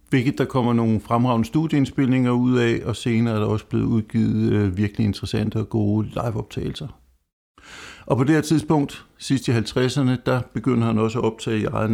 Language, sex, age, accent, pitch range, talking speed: Danish, male, 60-79, native, 105-125 Hz, 180 wpm